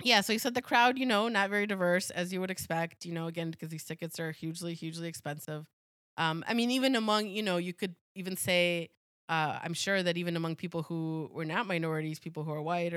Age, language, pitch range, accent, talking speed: 20-39, English, 160-190 Hz, American, 235 wpm